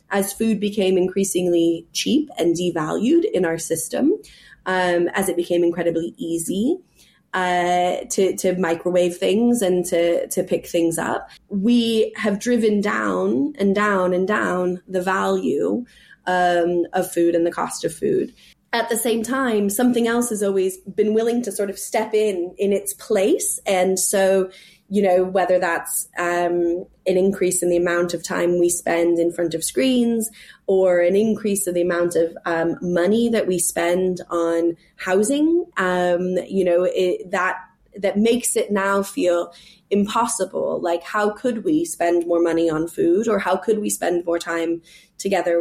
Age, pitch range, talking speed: 20-39, 175-210 Hz, 165 wpm